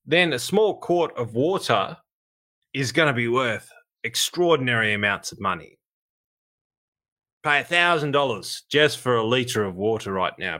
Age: 20-39